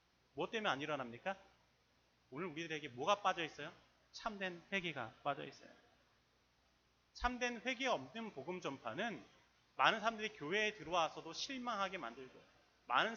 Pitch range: 120-195 Hz